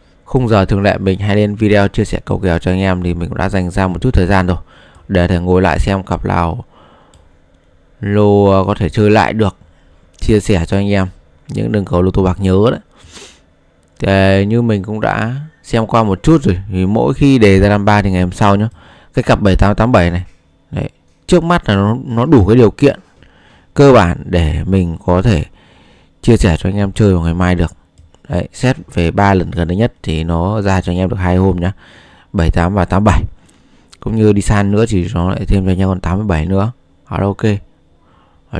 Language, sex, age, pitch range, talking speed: Vietnamese, male, 20-39, 90-105 Hz, 220 wpm